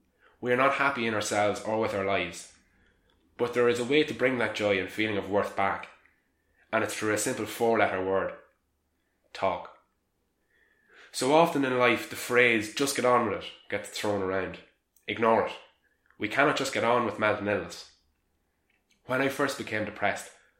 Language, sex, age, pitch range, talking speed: English, male, 20-39, 95-120 Hz, 180 wpm